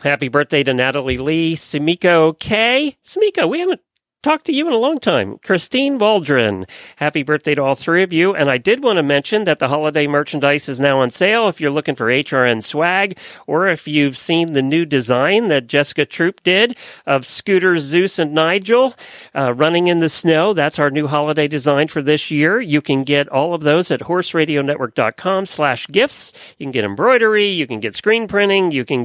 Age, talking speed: 40-59, 200 wpm